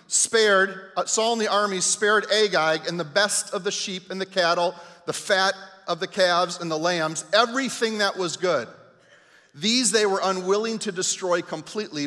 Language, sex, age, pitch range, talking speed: English, male, 40-59, 170-205 Hz, 175 wpm